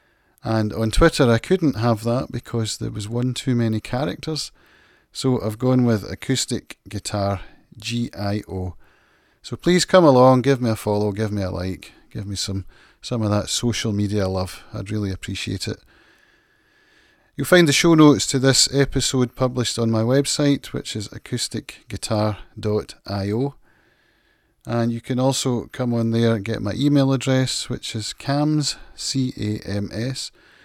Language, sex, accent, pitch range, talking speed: English, male, British, 105-140 Hz, 150 wpm